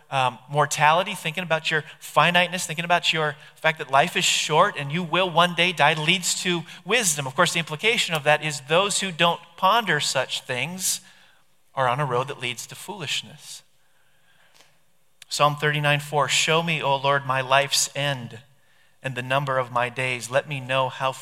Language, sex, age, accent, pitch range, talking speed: English, male, 40-59, American, 130-175 Hz, 180 wpm